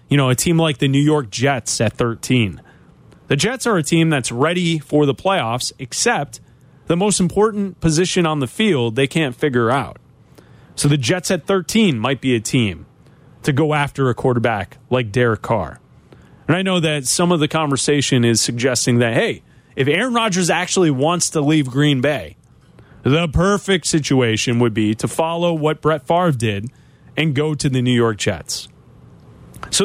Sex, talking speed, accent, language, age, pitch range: male, 180 wpm, American, English, 30-49, 125-170 Hz